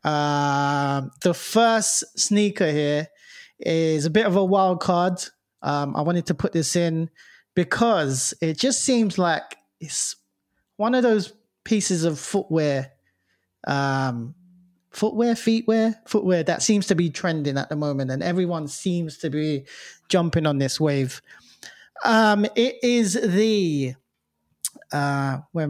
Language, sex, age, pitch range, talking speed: English, male, 30-49, 155-200 Hz, 135 wpm